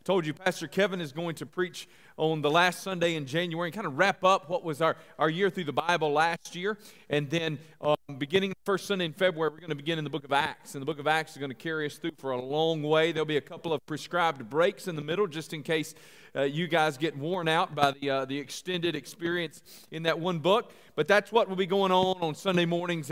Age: 40-59